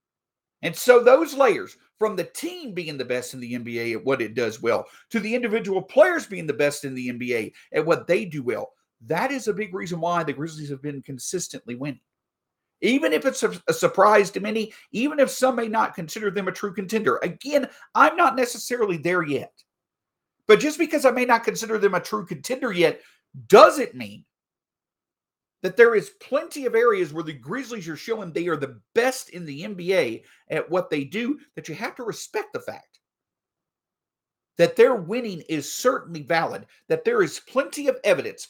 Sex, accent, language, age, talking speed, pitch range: male, American, English, 50-69, 190 wpm, 160-260 Hz